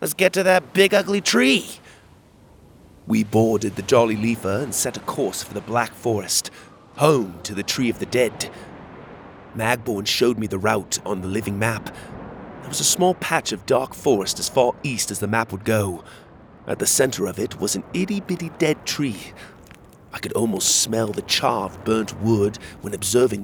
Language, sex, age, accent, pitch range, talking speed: English, male, 30-49, British, 100-125 Hz, 185 wpm